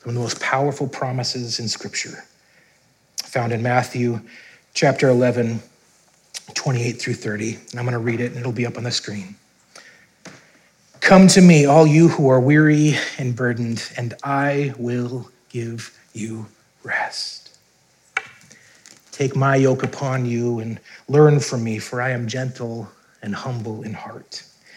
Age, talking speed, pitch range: 30-49, 150 wpm, 120-160 Hz